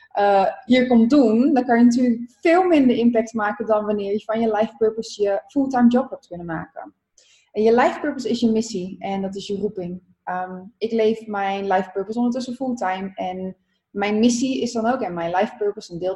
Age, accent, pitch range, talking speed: 20-39, Dutch, 185-225 Hz, 210 wpm